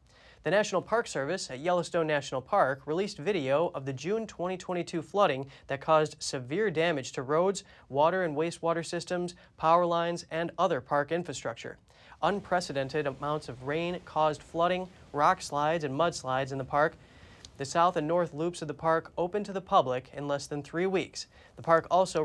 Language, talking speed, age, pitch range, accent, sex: English, 175 wpm, 20-39, 145-185 Hz, American, male